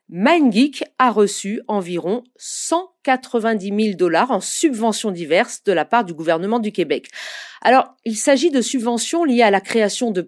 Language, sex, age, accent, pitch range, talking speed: French, female, 40-59, French, 200-285 Hz, 160 wpm